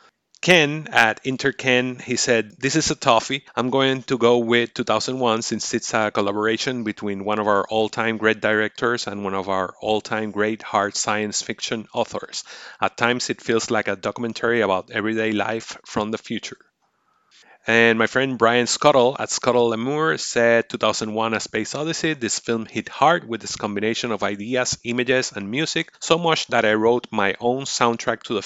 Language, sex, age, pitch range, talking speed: English, male, 30-49, 105-125 Hz, 175 wpm